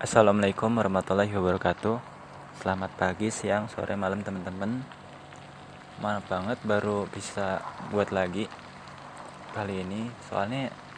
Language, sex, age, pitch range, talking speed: Indonesian, male, 20-39, 95-110 Hz, 100 wpm